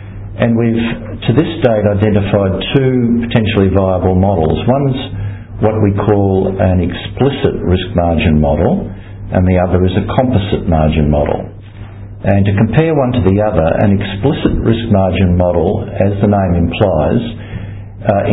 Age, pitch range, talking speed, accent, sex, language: 50-69, 95-115 Hz, 145 wpm, Australian, male, English